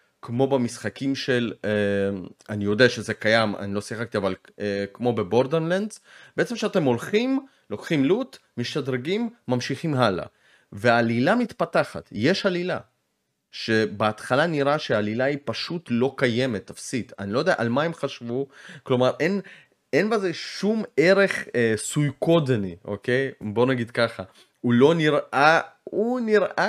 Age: 30-49